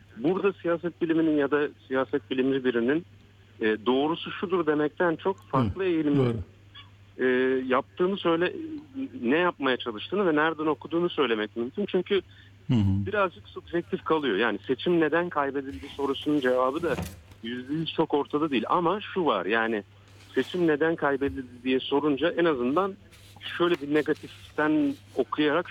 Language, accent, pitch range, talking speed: Turkish, native, 100-160 Hz, 130 wpm